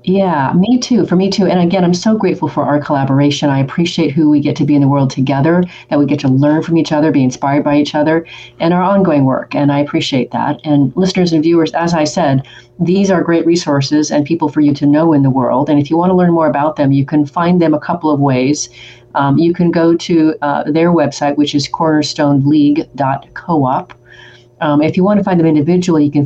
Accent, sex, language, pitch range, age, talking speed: American, female, English, 140-165 Hz, 40-59, 240 wpm